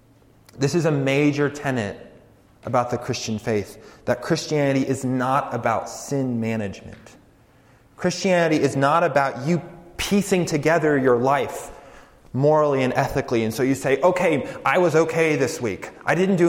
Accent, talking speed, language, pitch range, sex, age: American, 150 wpm, English, 125-170 Hz, male, 30-49